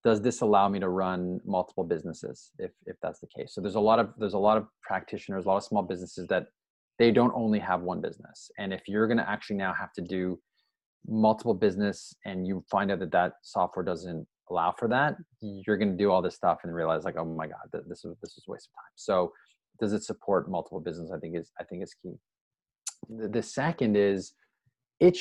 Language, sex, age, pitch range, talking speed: English, male, 20-39, 90-110 Hz, 230 wpm